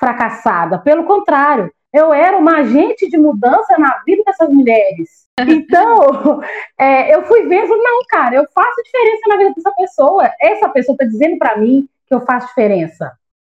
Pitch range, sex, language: 235-355 Hz, female, Portuguese